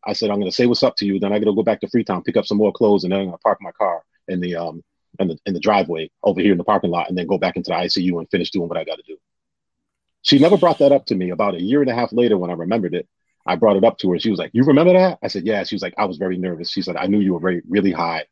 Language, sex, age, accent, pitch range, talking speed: English, male, 30-49, American, 95-135 Hz, 355 wpm